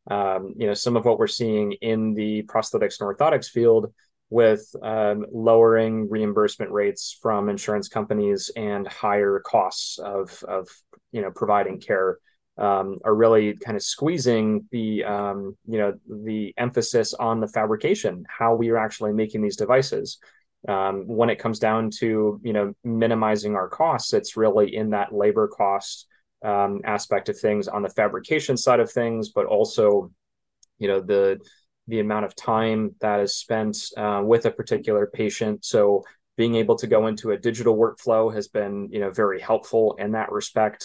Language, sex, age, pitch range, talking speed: English, male, 20-39, 100-110 Hz, 170 wpm